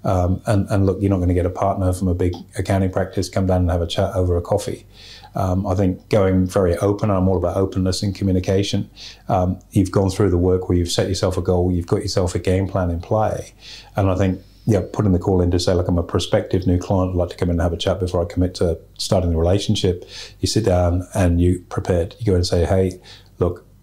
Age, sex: 30-49, male